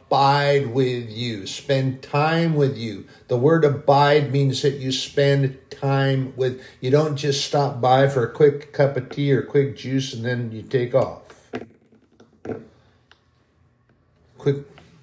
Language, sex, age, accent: English, male, 50-69, American